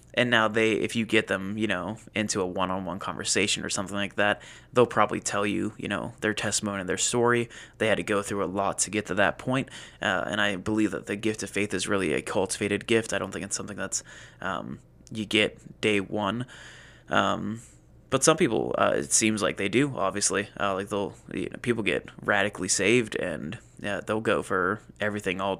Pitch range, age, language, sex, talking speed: 100-115 Hz, 20-39, English, male, 215 wpm